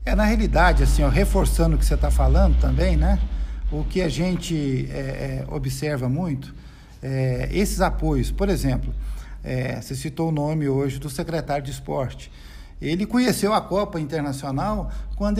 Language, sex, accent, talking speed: Portuguese, male, Brazilian, 165 wpm